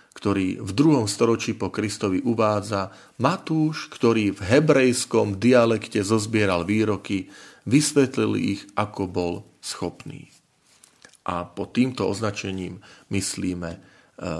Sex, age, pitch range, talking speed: male, 40-59, 95-115 Hz, 100 wpm